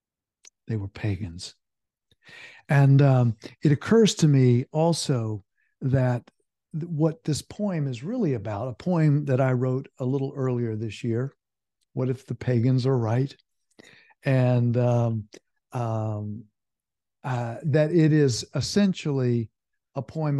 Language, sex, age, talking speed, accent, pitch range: English, male, 60-79, 130 wpm, American, 115-150 Hz